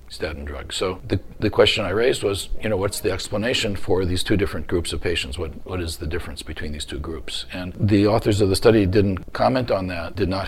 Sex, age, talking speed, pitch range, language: male, 40-59, 240 wpm, 90-105 Hz, English